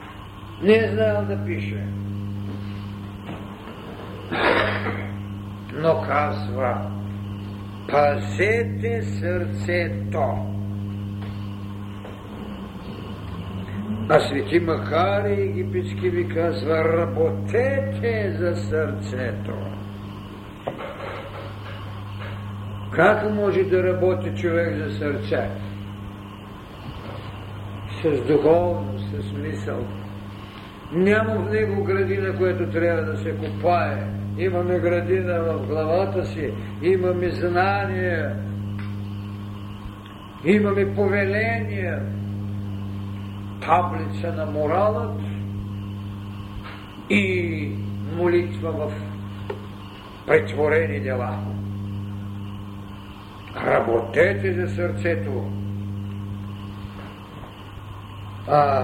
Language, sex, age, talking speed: Bulgarian, male, 60-79, 60 wpm